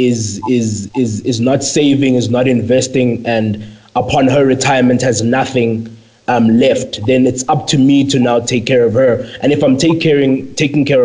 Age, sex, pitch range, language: 20-39, male, 120-140 Hz, English